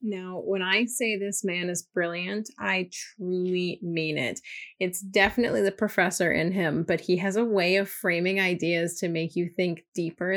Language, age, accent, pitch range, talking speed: English, 30-49, American, 175-210 Hz, 180 wpm